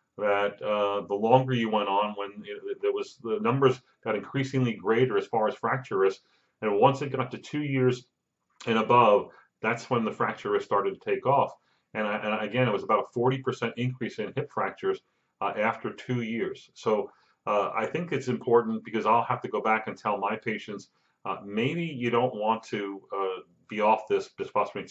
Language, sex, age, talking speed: English, male, 40-59, 195 wpm